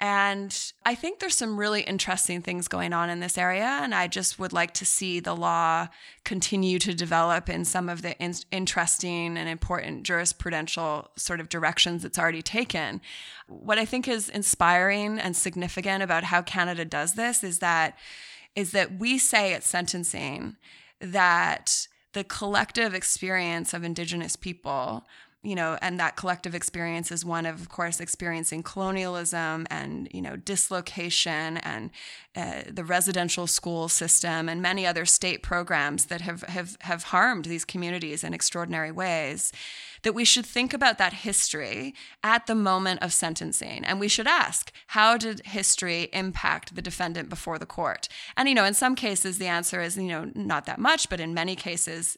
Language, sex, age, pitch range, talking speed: English, female, 20-39, 170-195 Hz, 170 wpm